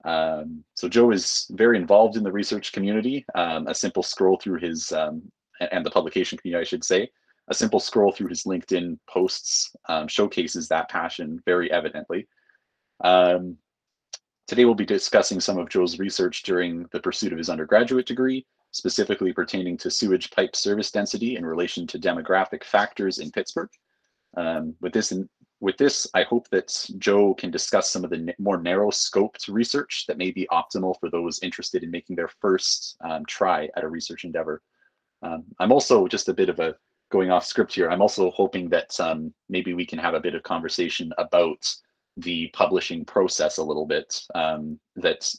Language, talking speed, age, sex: English, 180 wpm, 30-49, male